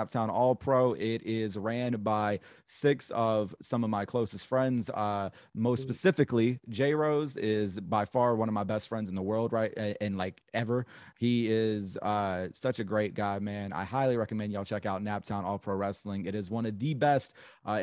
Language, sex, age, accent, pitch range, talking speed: English, male, 30-49, American, 105-135 Hz, 200 wpm